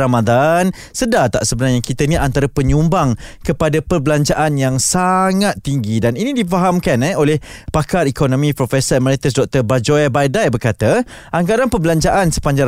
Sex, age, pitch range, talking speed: male, 20-39, 130-185 Hz, 135 wpm